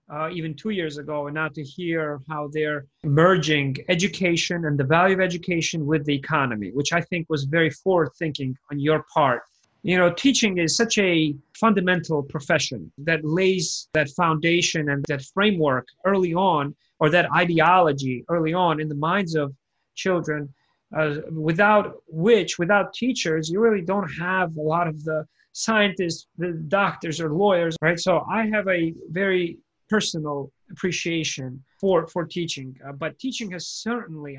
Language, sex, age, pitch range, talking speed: English, male, 30-49, 155-180 Hz, 160 wpm